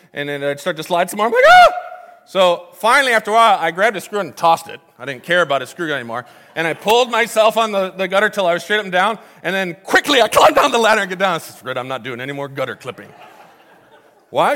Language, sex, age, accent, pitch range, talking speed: English, male, 40-59, American, 165-225 Hz, 270 wpm